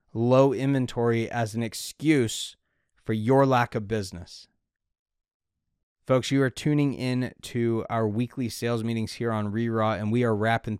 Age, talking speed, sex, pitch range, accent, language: 30-49, 150 wpm, male, 110-130 Hz, American, English